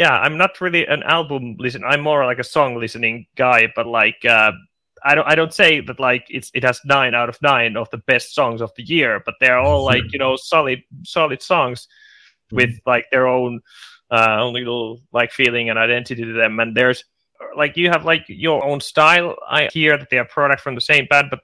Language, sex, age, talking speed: Finnish, male, 30-49, 225 wpm